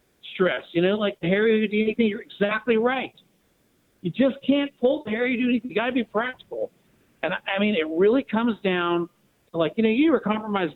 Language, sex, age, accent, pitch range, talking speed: English, male, 50-69, American, 185-245 Hz, 205 wpm